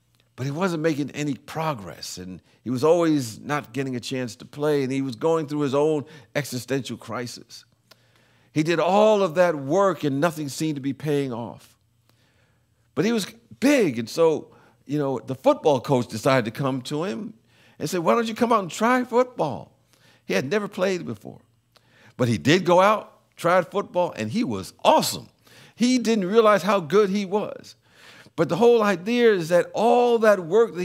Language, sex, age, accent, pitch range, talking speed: English, male, 50-69, American, 120-185 Hz, 190 wpm